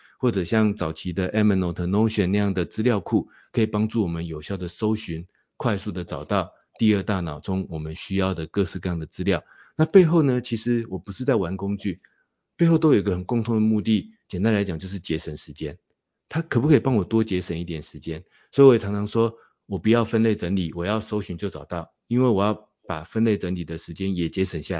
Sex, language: male, Chinese